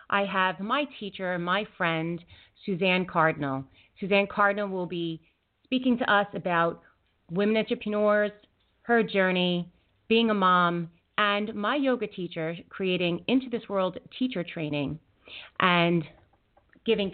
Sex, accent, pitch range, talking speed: female, American, 170-220 Hz, 125 wpm